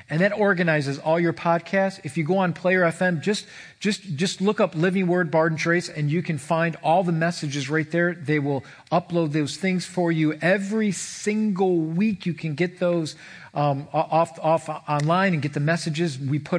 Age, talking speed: 40-59, 200 wpm